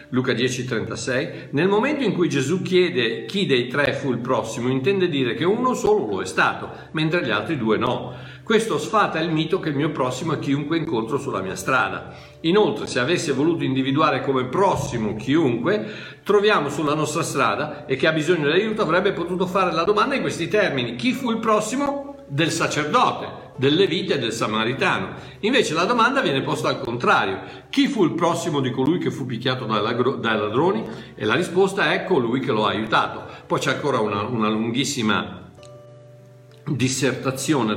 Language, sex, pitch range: Italian, male, 125-185 Hz